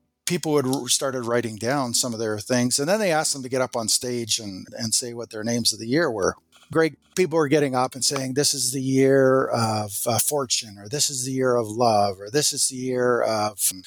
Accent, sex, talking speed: American, male, 240 wpm